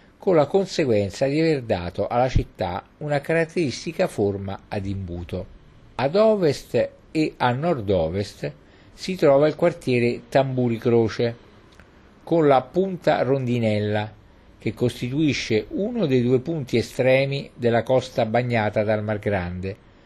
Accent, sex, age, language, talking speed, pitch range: native, male, 50-69, Italian, 125 wpm, 100-140 Hz